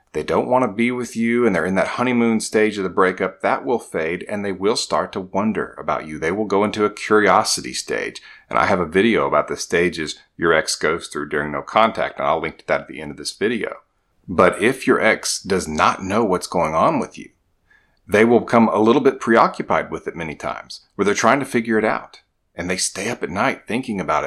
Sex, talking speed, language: male, 240 wpm, English